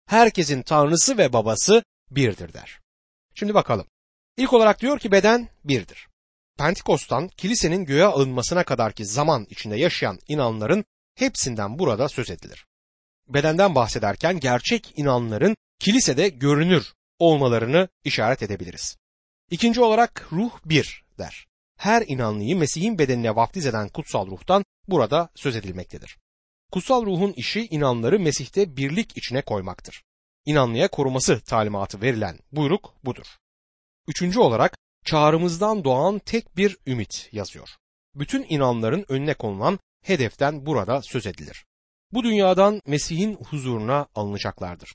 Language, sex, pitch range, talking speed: Turkish, male, 110-185 Hz, 115 wpm